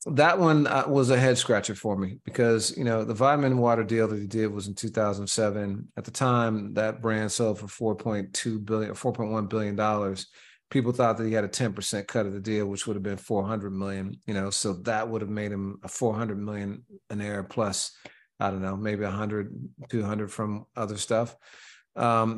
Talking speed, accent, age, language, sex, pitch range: 200 wpm, American, 40-59, English, male, 105-120 Hz